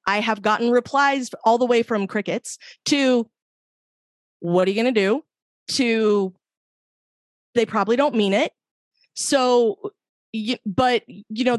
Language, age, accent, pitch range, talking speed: English, 20-39, American, 210-265 Hz, 135 wpm